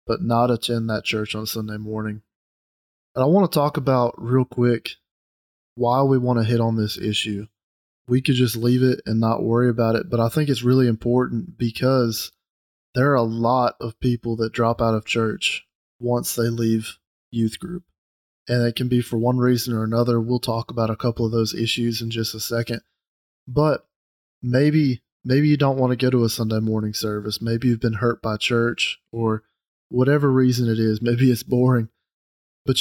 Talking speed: 195 wpm